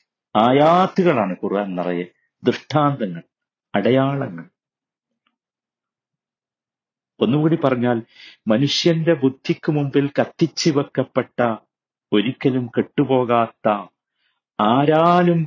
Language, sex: Malayalam, male